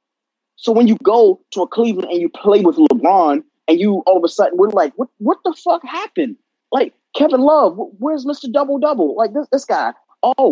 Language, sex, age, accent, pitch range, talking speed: English, male, 20-39, American, 210-275 Hz, 210 wpm